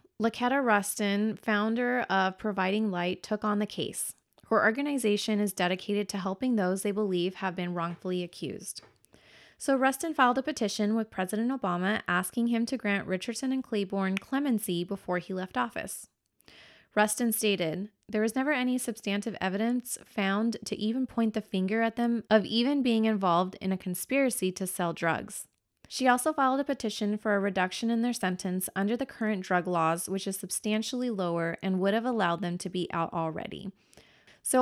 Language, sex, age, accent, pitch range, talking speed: English, female, 20-39, American, 185-230 Hz, 170 wpm